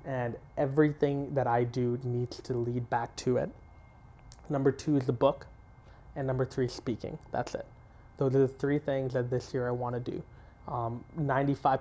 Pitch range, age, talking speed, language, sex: 125-135 Hz, 20-39, 180 wpm, English, male